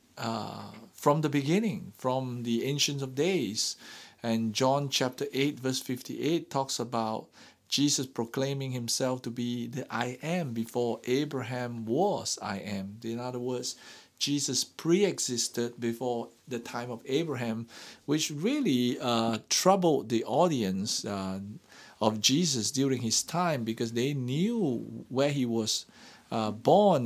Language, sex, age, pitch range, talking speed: English, male, 50-69, 115-145 Hz, 135 wpm